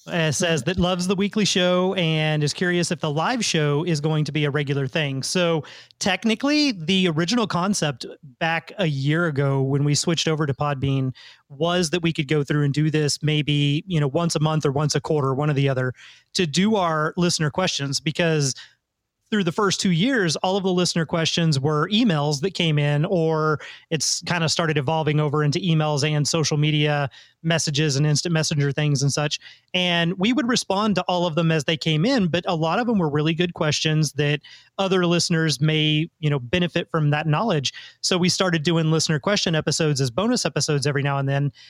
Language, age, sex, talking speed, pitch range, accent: English, 30-49, male, 205 wpm, 150-180 Hz, American